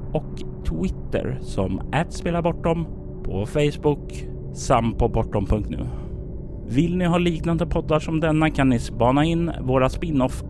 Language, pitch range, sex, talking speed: Swedish, 110-155 Hz, male, 120 wpm